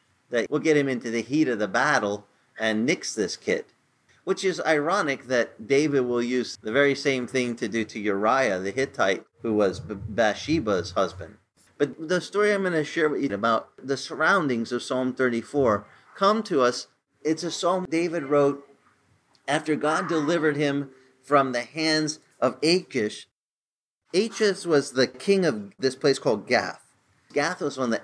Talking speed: 175 wpm